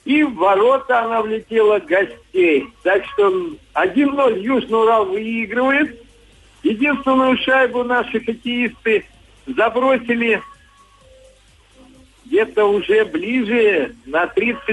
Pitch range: 195-280 Hz